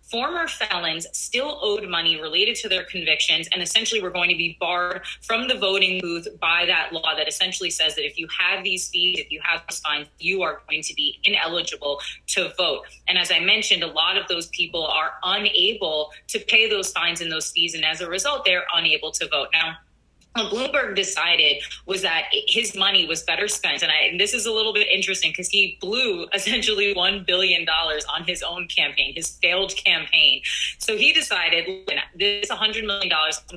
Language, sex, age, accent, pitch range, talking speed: English, female, 20-39, American, 155-195 Hz, 195 wpm